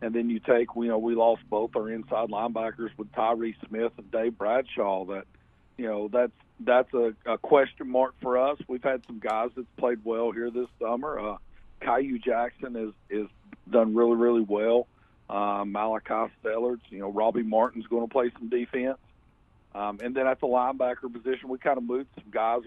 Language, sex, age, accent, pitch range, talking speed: English, male, 50-69, American, 110-120 Hz, 195 wpm